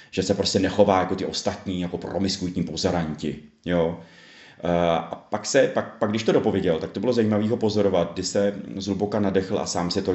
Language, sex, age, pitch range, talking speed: Czech, male, 30-49, 85-105 Hz, 190 wpm